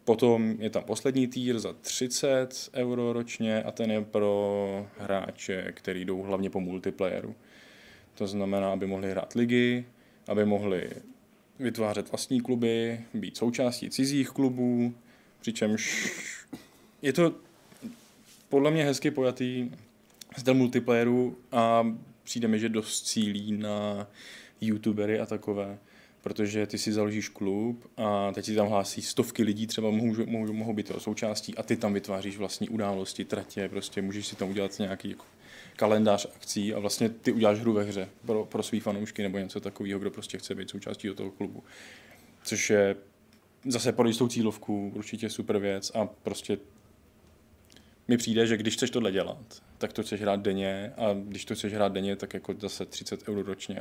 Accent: native